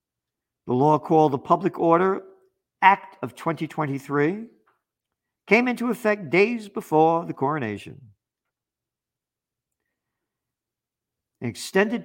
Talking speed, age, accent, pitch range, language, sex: 85 wpm, 50-69, American, 120-170 Hz, English, male